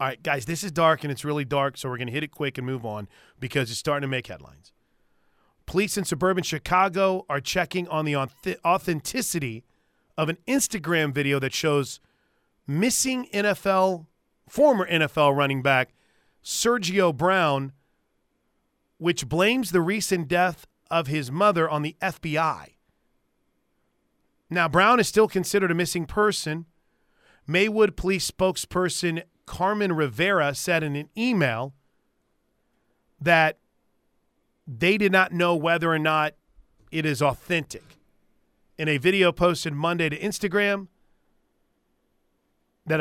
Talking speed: 135 wpm